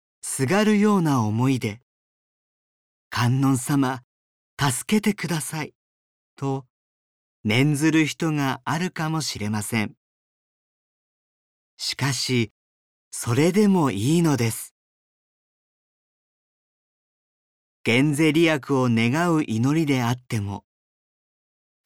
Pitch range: 115-160 Hz